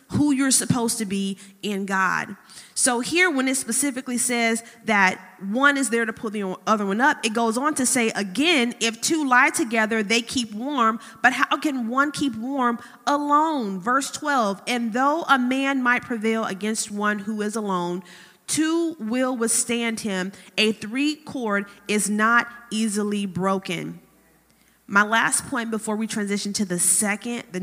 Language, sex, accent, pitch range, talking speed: English, female, American, 205-260 Hz, 165 wpm